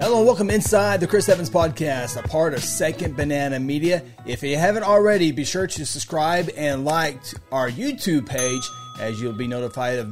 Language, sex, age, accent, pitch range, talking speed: English, male, 30-49, American, 135-180 Hz, 190 wpm